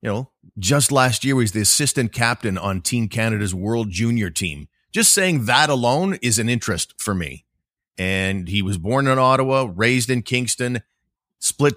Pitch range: 95-120 Hz